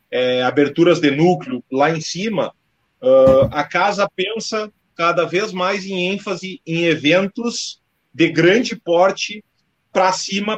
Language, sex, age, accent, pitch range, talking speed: Portuguese, male, 30-49, Brazilian, 150-200 Hz, 130 wpm